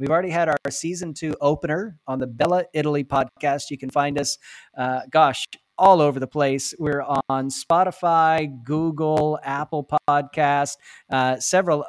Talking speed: 150 wpm